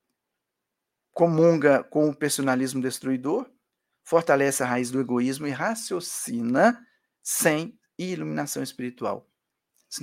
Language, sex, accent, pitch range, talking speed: Portuguese, male, Brazilian, 125-180 Hz, 95 wpm